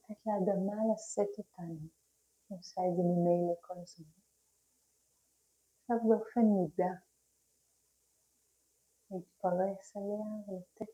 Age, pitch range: 30-49, 175-210 Hz